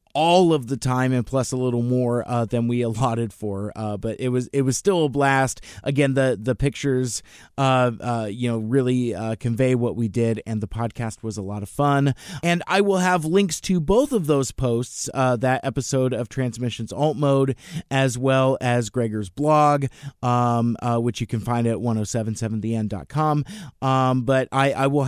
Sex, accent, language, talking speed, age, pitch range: male, American, English, 195 wpm, 20-39, 115-145 Hz